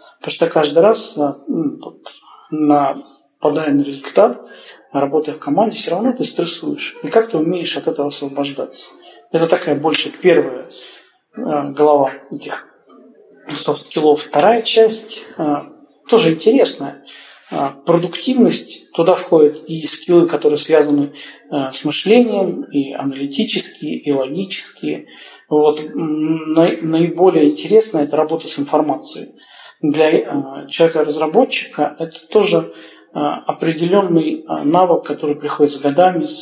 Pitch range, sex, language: 145-170 Hz, male, Russian